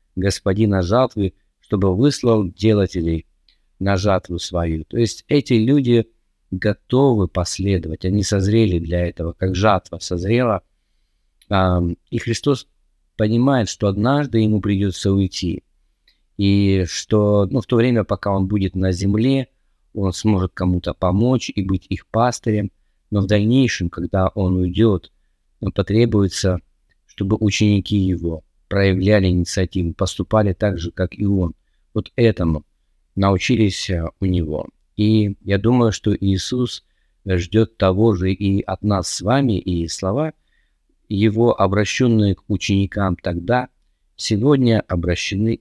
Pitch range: 90-110 Hz